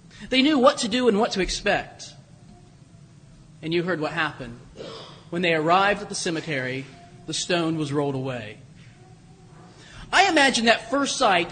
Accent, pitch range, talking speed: American, 155-230 Hz, 155 wpm